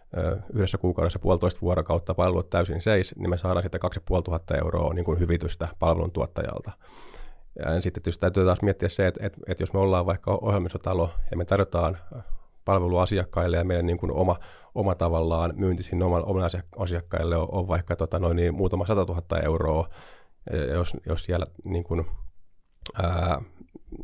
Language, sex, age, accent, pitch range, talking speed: Finnish, male, 30-49, native, 85-95 Hz, 155 wpm